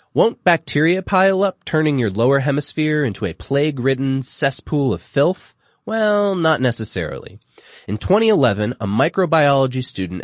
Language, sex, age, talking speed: English, male, 30-49, 130 wpm